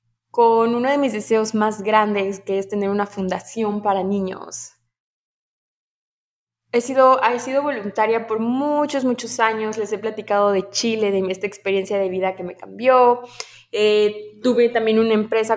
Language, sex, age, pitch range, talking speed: Spanish, female, 20-39, 200-245 Hz, 160 wpm